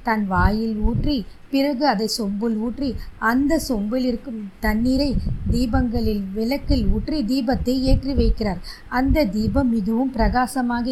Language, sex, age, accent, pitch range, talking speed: Tamil, female, 20-39, native, 220-265 Hz, 115 wpm